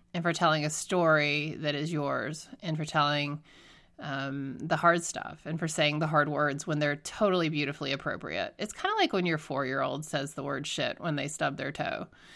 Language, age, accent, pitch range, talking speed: English, 30-49, American, 145-175 Hz, 205 wpm